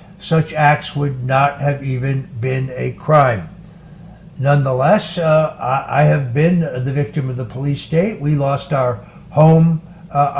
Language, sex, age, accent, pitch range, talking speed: English, male, 60-79, American, 135-170 Hz, 145 wpm